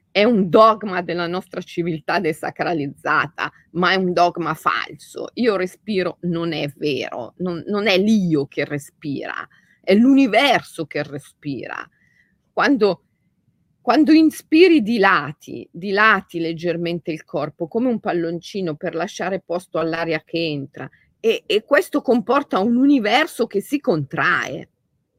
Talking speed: 130 wpm